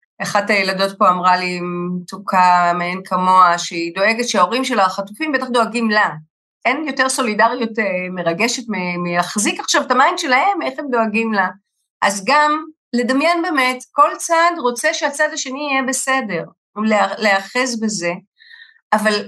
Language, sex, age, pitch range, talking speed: Hebrew, female, 30-49, 200-280 Hz, 140 wpm